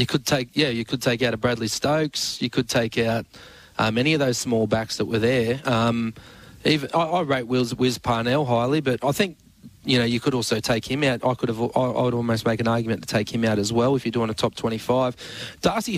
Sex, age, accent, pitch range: male, 20-39, Australian, 110-125 Hz